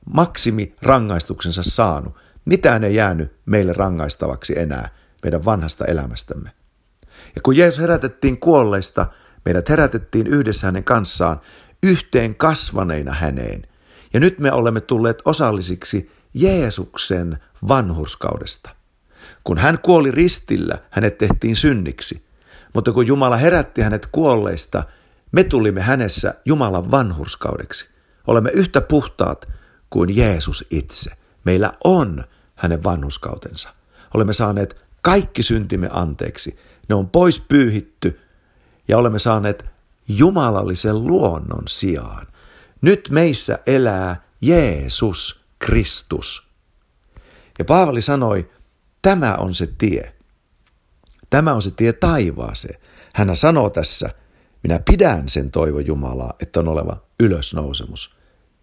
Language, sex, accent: Finnish, male, native